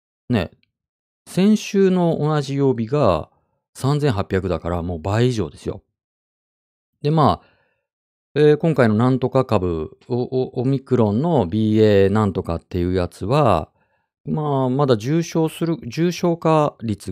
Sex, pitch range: male, 90-135 Hz